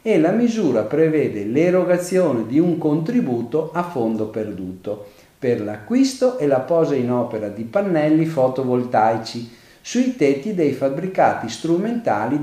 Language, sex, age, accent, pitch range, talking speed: Italian, male, 50-69, native, 115-170 Hz, 125 wpm